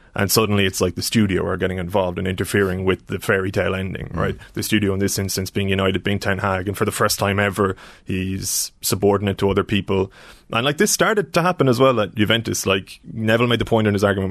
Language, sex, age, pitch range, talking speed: English, male, 20-39, 100-115 Hz, 235 wpm